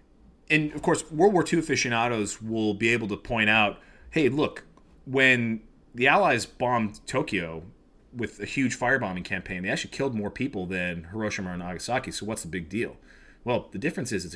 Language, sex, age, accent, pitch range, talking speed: English, male, 30-49, American, 105-130 Hz, 185 wpm